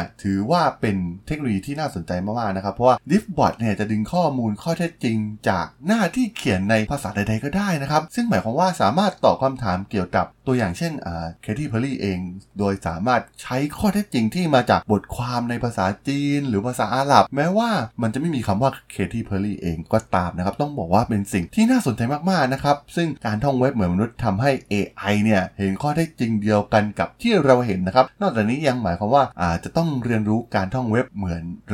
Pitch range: 95-140 Hz